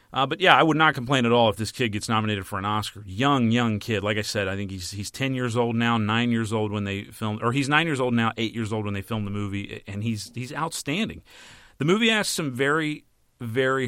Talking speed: 265 wpm